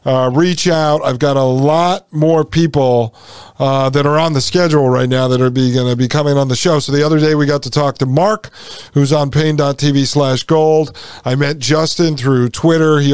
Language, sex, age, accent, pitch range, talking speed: English, male, 50-69, American, 130-155 Hz, 220 wpm